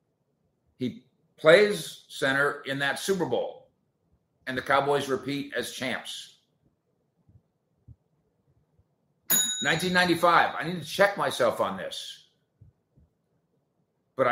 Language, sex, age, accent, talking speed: English, male, 50-69, American, 90 wpm